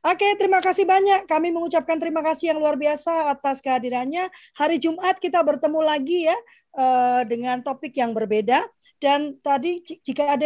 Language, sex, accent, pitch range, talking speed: Indonesian, female, native, 250-330 Hz, 155 wpm